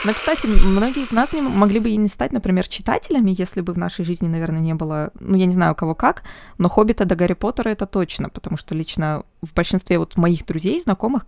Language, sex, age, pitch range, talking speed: Russian, female, 20-39, 165-205 Hz, 240 wpm